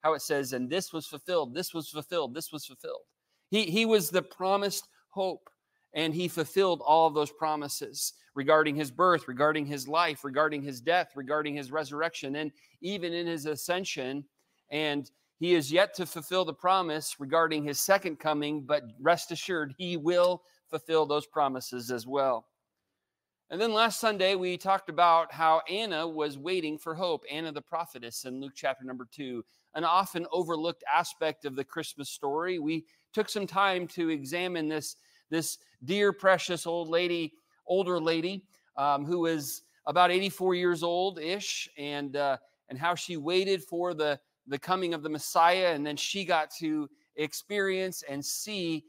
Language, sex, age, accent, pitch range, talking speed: English, male, 30-49, American, 145-180 Hz, 165 wpm